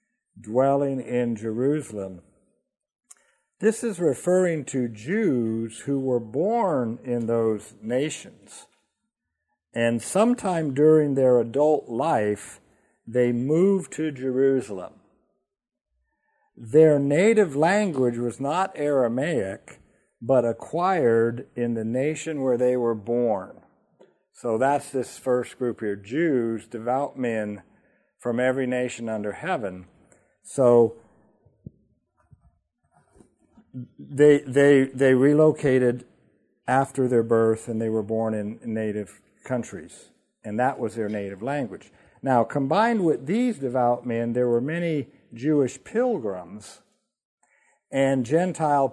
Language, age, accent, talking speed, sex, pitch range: English, 60-79, American, 105 wpm, male, 115-150 Hz